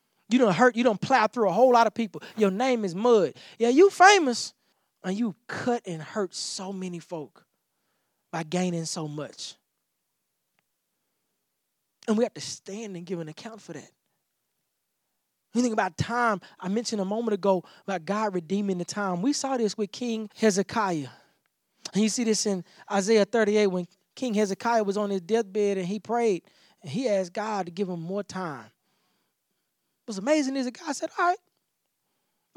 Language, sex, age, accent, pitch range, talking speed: English, male, 20-39, American, 180-235 Hz, 175 wpm